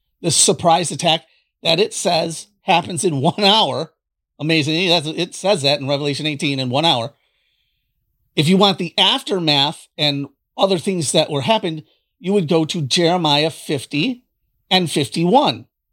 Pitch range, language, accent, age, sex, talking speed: 145-185 Hz, English, American, 40-59, male, 145 wpm